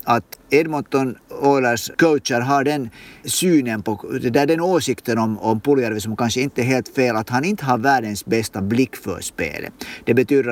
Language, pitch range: Swedish, 115-150 Hz